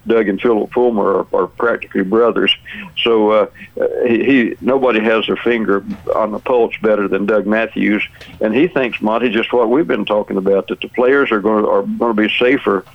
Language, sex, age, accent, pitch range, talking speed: English, male, 60-79, American, 105-120 Hz, 200 wpm